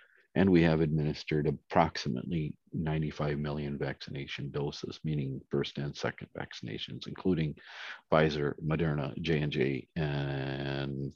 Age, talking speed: 50-69, 100 wpm